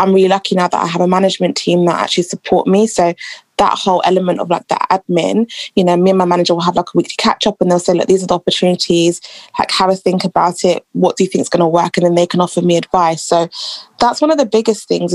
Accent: British